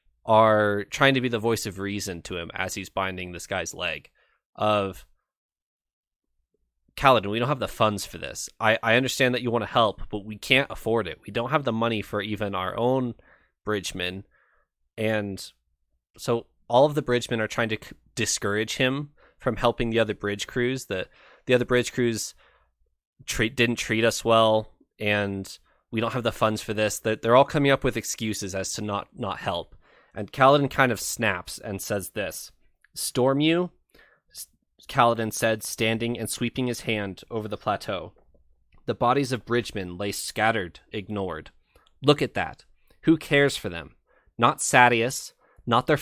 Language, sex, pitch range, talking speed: English, male, 100-125 Hz, 170 wpm